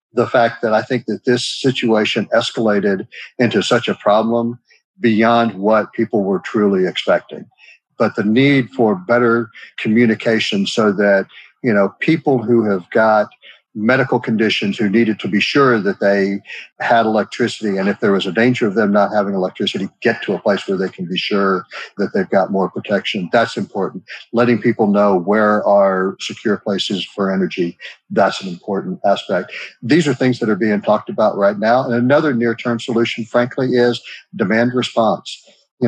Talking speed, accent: 170 wpm, American